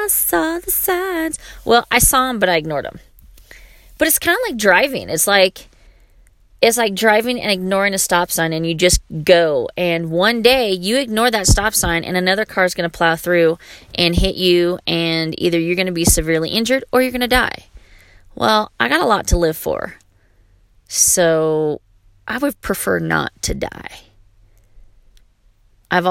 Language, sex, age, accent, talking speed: English, female, 30-49, American, 180 wpm